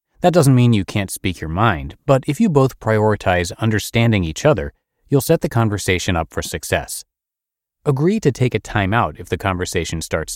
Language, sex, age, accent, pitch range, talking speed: English, male, 30-49, American, 90-130 Hz, 190 wpm